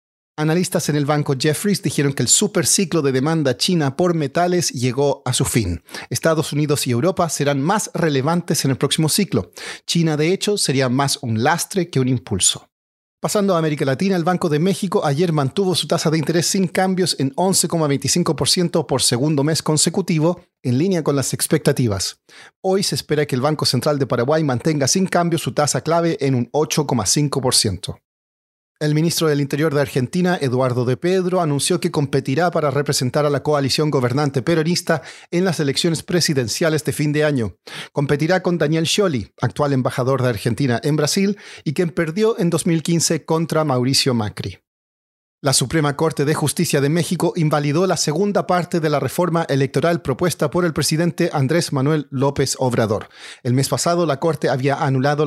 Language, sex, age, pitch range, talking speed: Spanish, male, 40-59, 135-170 Hz, 175 wpm